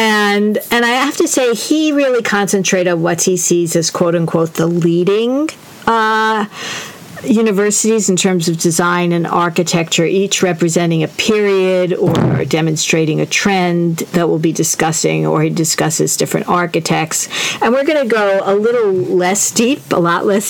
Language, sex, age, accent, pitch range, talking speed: English, female, 50-69, American, 165-205 Hz, 160 wpm